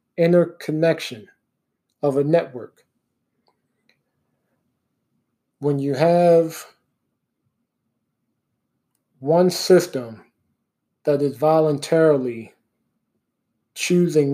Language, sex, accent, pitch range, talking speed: English, male, American, 140-155 Hz, 55 wpm